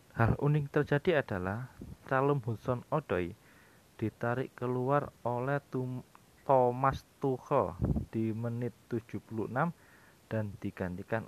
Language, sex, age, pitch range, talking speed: Indonesian, male, 20-39, 105-130 Hz, 95 wpm